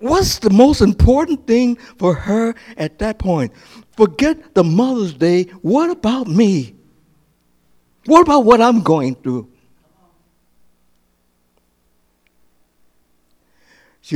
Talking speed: 100 wpm